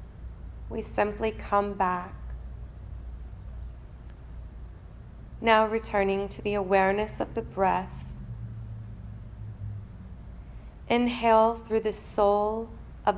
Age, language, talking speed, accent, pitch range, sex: 20-39, English, 75 wpm, American, 180-210 Hz, female